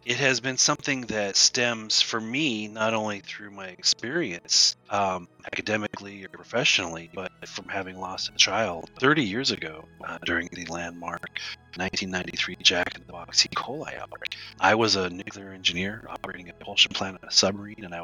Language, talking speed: English, 175 wpm